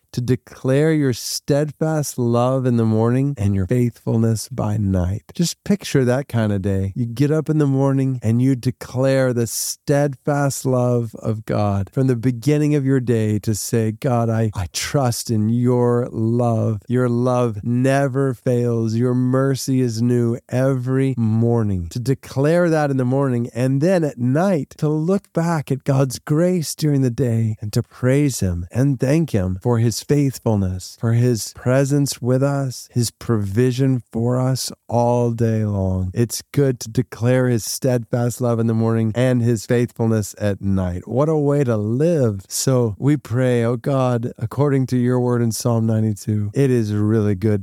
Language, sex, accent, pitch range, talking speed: English, male, American, 110-130 Hz, 170 wpm